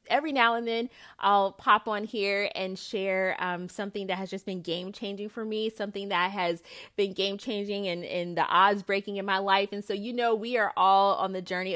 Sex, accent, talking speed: female, American, 215 wpm